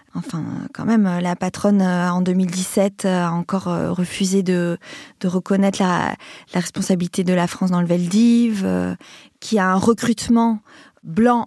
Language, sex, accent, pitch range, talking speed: French, female, French, 195-235 Hz, 140 wpm